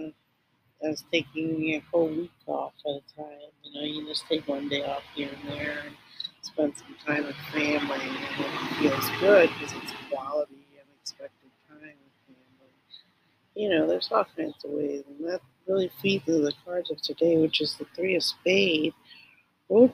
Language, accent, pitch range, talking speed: English, American, 150-180 Hz, 180 wpm